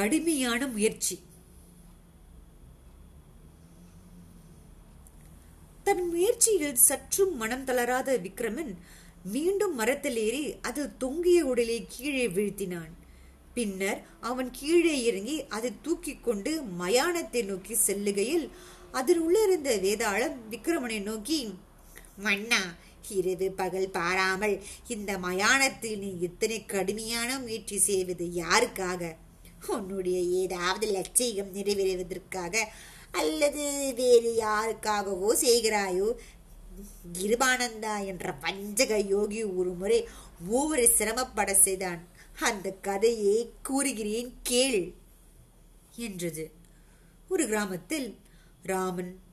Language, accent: Tamil, native